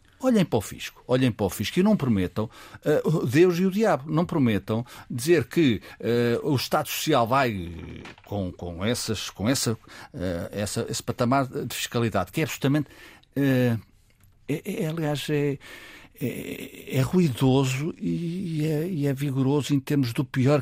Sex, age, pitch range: male, 60-79, 105-145 Hz